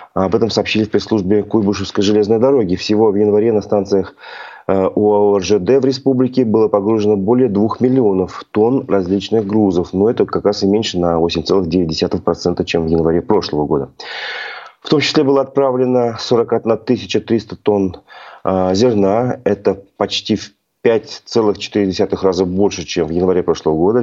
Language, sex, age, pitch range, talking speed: Russian, male, 30-49, 100-125 Hz, 150 wpm